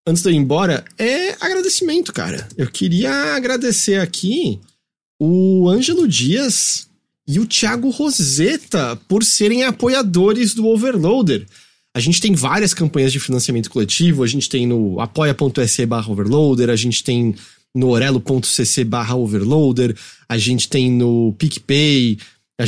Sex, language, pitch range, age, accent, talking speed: male, English, 125-190 Hz, 30-49, Brazilian, 130 wpm